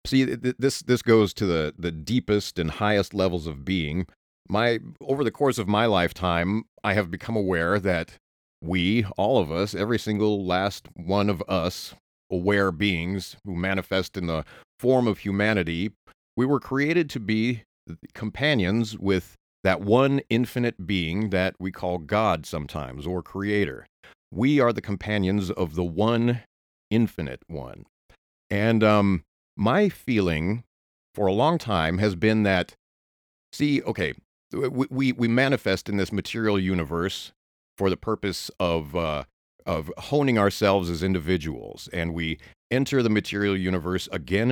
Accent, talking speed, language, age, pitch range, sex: American, 145 wpm, English, 40-59, 90-115 Hz, male